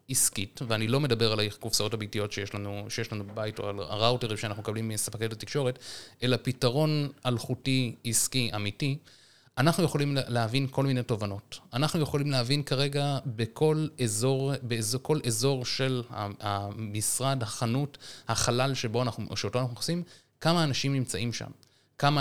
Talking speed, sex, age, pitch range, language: 140 wpm, male, 30-49, 115-135 Hz, Hebrew